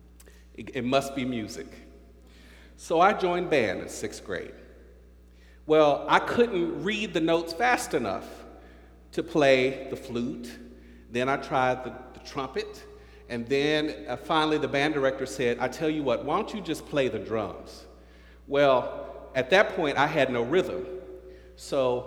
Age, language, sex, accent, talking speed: 40-59, English, male, American, 155 wpm